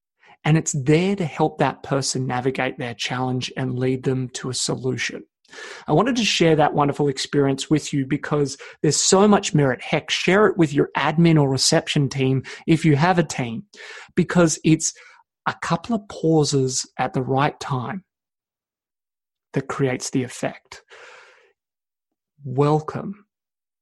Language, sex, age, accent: English, male, 30-49, Australian